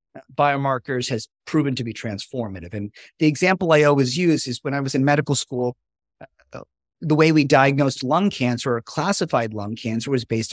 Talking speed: 180 wpm